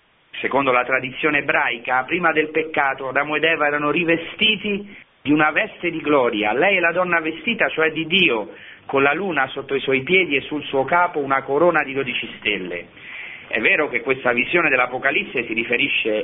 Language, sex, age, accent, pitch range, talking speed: Italian, male, 40-59, native, 120-165 Hz, 180 wpm